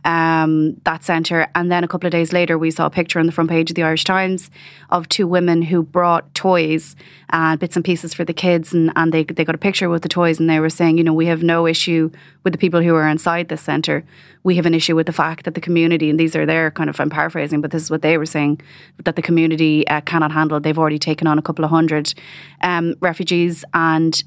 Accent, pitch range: Irish, 160-175 Hz